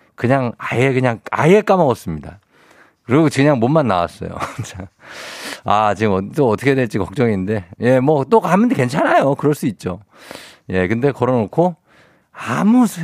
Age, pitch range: 50-69, 95-145 Hz